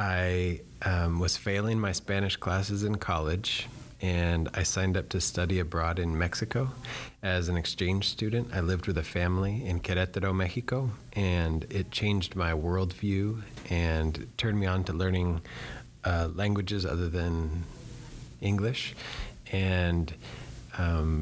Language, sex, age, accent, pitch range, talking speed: English, male, 30-49, American, 85-105 Hz, 135 wpm